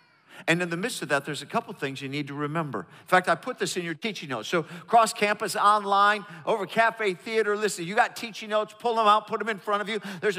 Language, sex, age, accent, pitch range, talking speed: English, male, 50-69, American, 165-215 Hz, 265 wpm